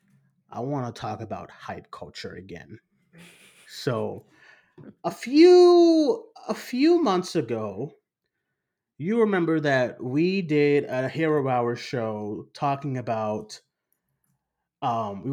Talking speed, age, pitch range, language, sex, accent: 105 wpm, 30-49, 120-150 Hz, English, male, American